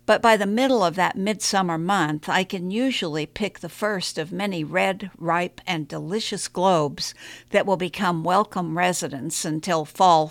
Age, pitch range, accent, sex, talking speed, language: 60-79, 155-205 Hz, American, female, 165 wpm, English